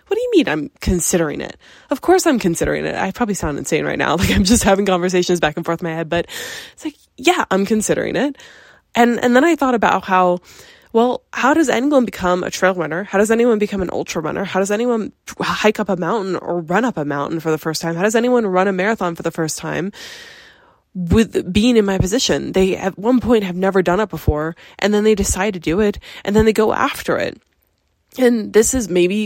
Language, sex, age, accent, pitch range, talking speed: English, female, 10-29, American, 170-220 Hz, 230 wpm